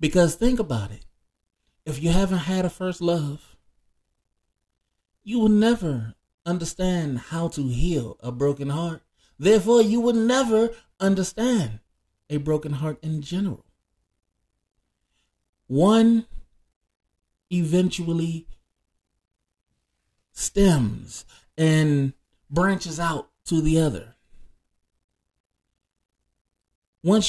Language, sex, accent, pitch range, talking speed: English, male, American, 145-195 Hz, 90 wpm